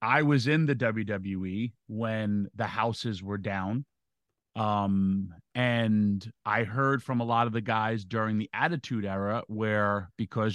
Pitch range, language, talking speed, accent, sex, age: 105-135 Hz, English, 150 wpm, American, male, 30-49